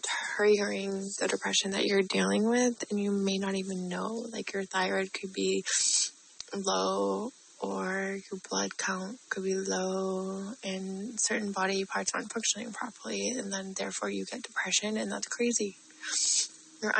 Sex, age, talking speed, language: female, 20-39, 150 wpm, English